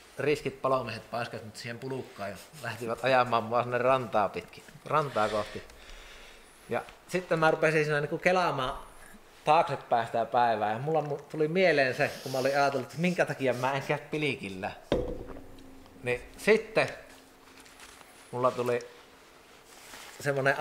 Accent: native